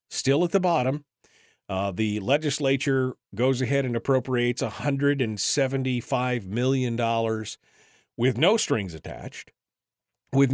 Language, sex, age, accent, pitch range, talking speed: English, male, 40-59, American, 120-155 Hz, 130 wpm